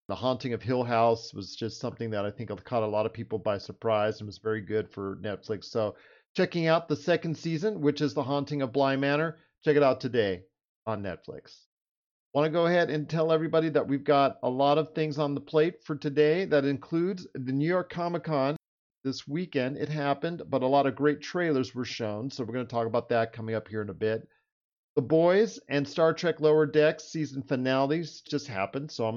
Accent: American